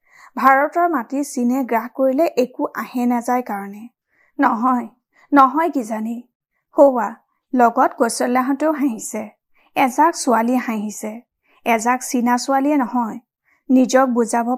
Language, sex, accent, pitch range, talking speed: Hindi, female, native, 240-275 Hz, 65 wpm